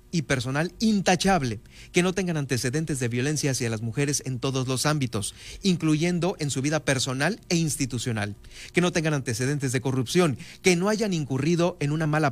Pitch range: 130-170 Hz